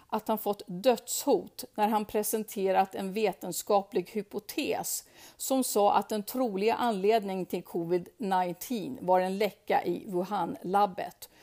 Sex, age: female, 50-69